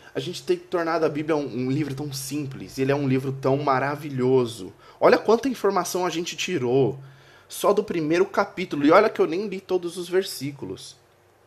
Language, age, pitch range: Portuguese, 20-39, 130-160 Hz